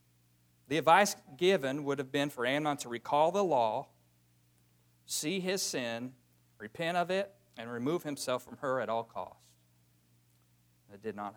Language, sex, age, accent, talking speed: English, male, 50-69, American, 155 wpm